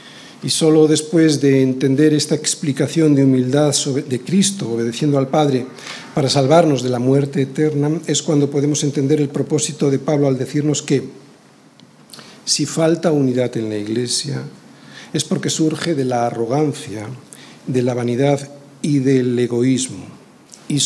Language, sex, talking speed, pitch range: Spanish, male, 145 wpm, 135-170 Hz